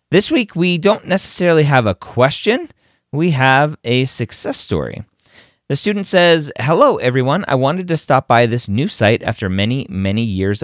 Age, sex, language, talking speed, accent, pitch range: 30-49, male, English, 170 wpm, American, 100-130 Hz